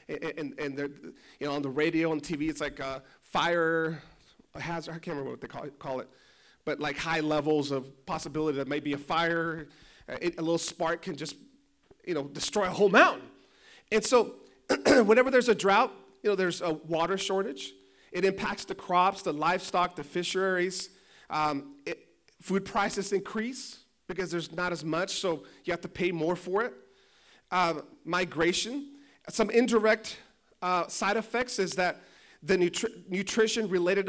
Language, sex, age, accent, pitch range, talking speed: English, male, 30-49, American, 165-205 Hz, 165 wpm